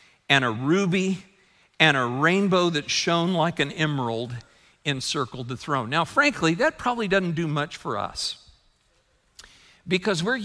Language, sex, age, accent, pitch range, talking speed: English, male, 50-69, American, 140-190 Hz, 145 wpm